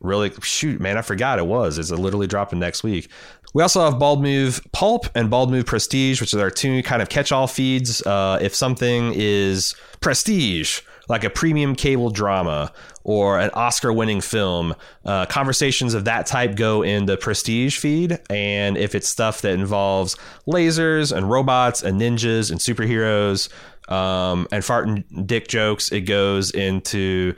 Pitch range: 95-125 Hz